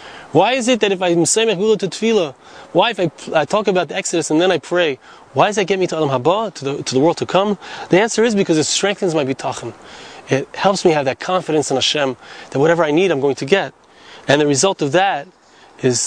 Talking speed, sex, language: 250 wpm, male, English